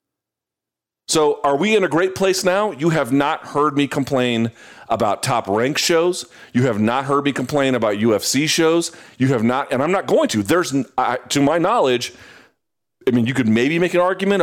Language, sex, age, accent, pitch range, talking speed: English, male, 40-59, American, 125-190 Hz, 195 wpm